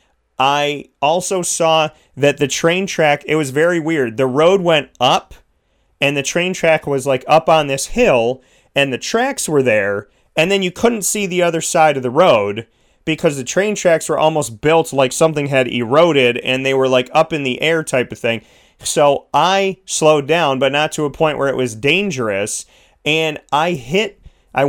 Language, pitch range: English, 135-170 Hz